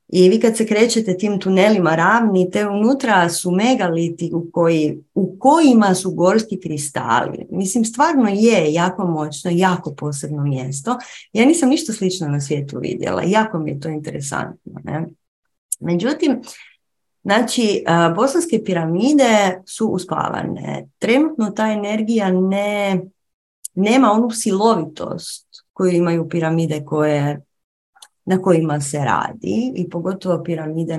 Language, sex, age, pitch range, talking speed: Croatian, female, 30-49, 155-205 Hz, 125 wpm